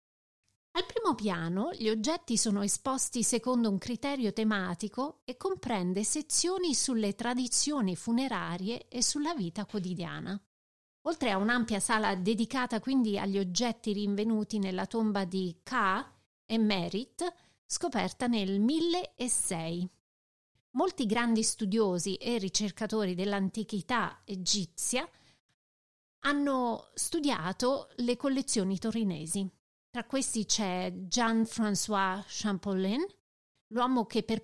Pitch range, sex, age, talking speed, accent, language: 200-255 Hz, female, 30-49, 105 wpm, native, Italian